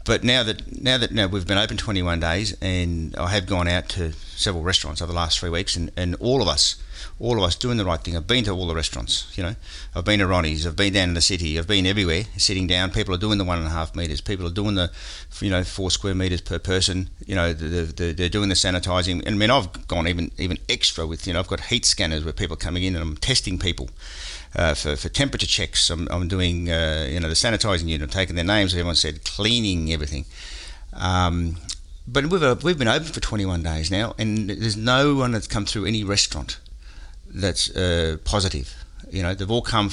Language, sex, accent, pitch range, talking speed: English, male, Australian, 80-105 Hz, 240 wpm